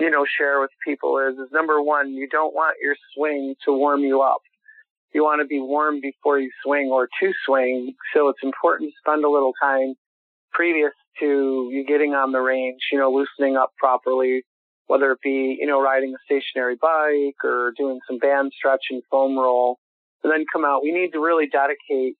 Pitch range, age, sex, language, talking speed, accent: 135-150 Hz, 40-59, male, English, 205 wpm, American